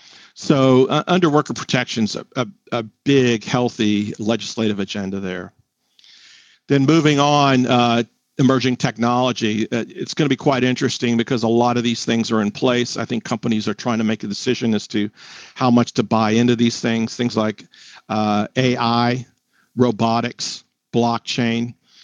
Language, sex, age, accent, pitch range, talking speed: English, male, 50-69, American, 115-135 Hz, 160 wpm